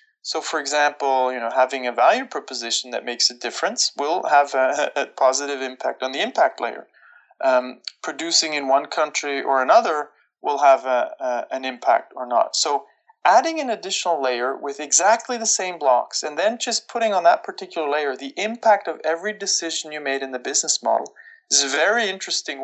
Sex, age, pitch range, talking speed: male, 30-49, 135-215 Hz, 190 wpm